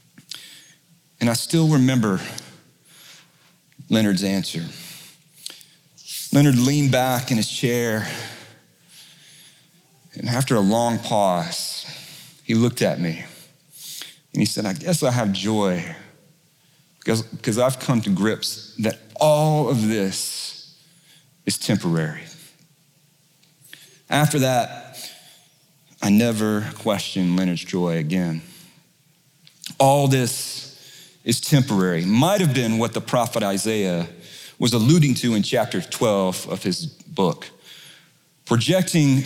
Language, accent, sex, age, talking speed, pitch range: English, American, male, 40-59, 105 wpm, 110-160 Hz